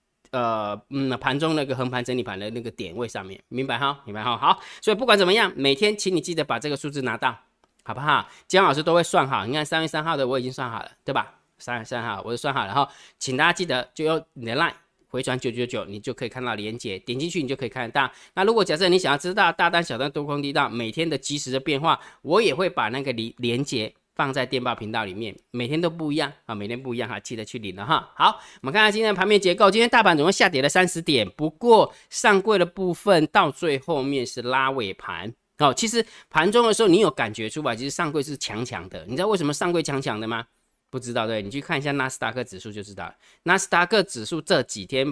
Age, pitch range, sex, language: 20-39, 120-165 Hz, male, Chinese